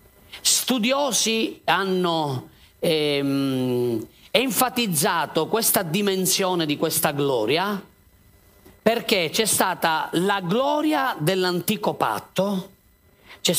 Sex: male